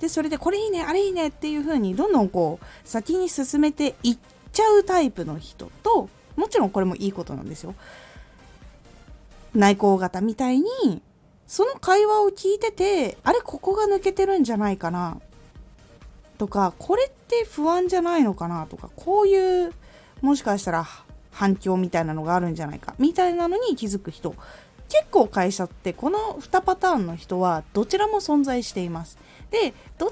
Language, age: Japanese, 20-39